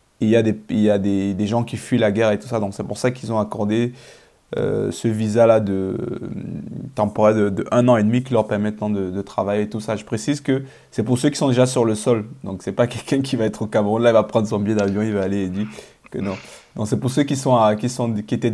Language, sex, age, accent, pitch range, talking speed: French, male, 20-39, French, 110-135 Hz, 290 wpm